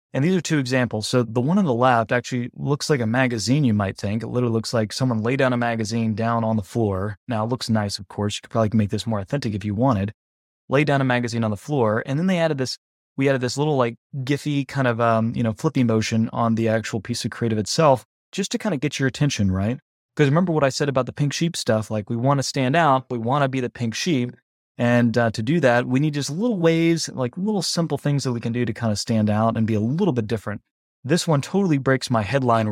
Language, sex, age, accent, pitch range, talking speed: English, male, 20-39, American, 110-135 Hz, 270 wpm